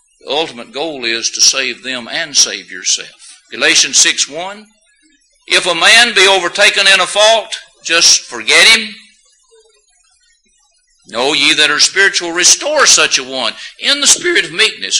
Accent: American